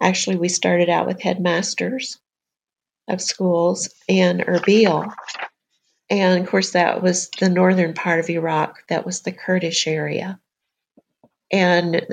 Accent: American